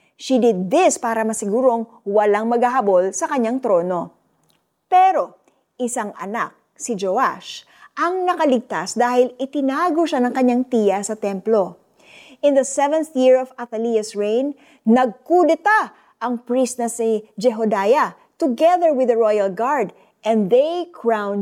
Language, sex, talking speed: Filipino, female, 130 wpm